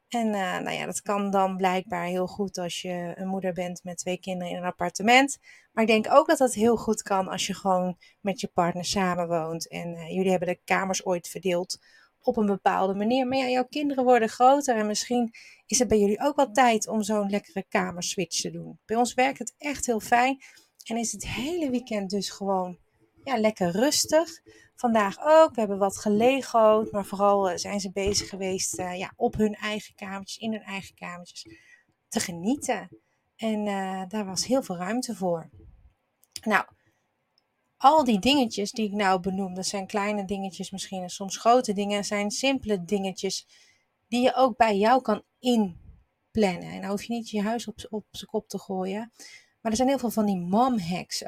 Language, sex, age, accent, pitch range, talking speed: Dutch, female, 30-49, Dutch, 190-235 Hz, 195 wpm